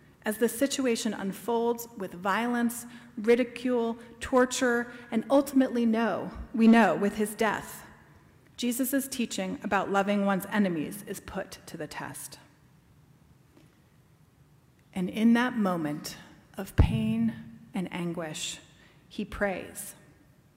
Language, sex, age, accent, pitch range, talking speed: English, female, 40-59, American, 170-240 Hz, 110 wpm